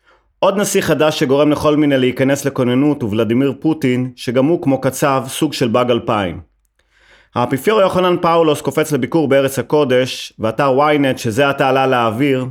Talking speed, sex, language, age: 145 wpm, male, Hebrew, 30-49